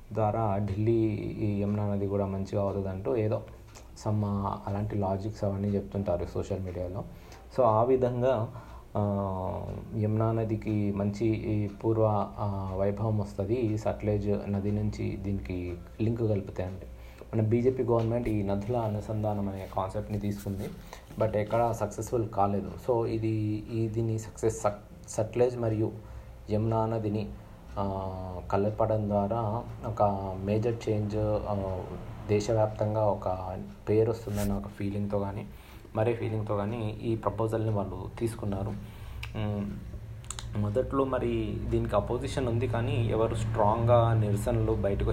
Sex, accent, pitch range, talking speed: male, native, 100-110 Hz, 110 wpm